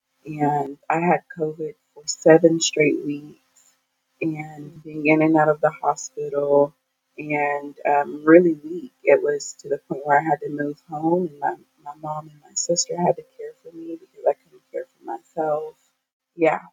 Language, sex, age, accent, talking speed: English, female, 30-49, American, 180 wpm